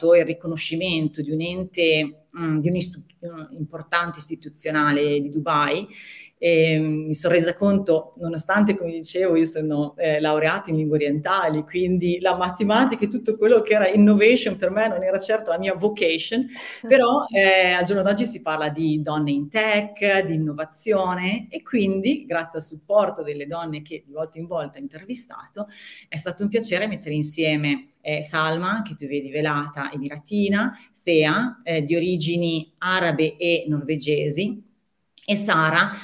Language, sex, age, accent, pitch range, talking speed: Italian, female, 30-49, native, 155-195 Hz, 155 wpm